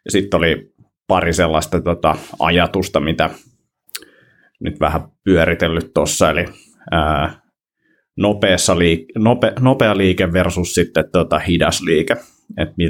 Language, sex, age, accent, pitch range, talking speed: Finnish, male, 30-49, native, 80-100 Hz, 110 wpm